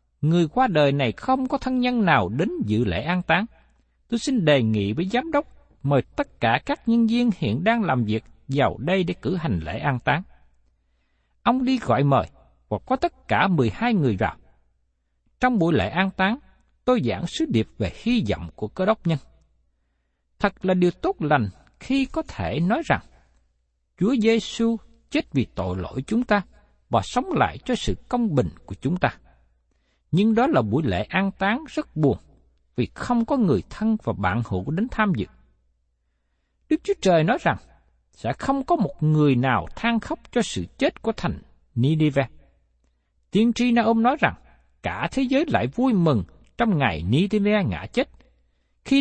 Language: Vietnamese